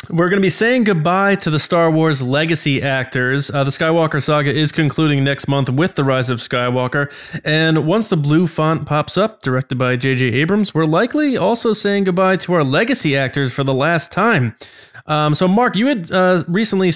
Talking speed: 200 wpm